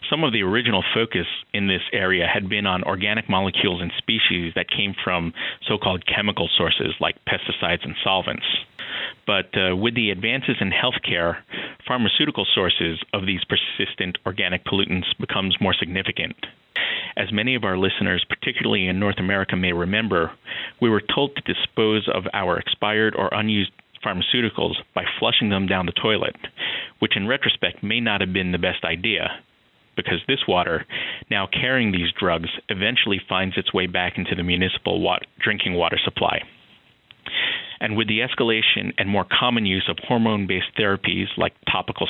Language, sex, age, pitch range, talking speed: English, male, 40-59, 90-110 Hz, 160 wpm